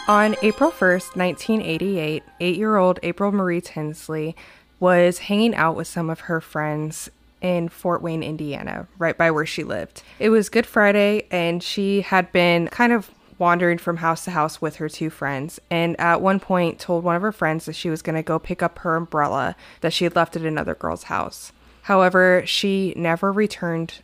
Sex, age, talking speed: female, 20-39, 185 wpm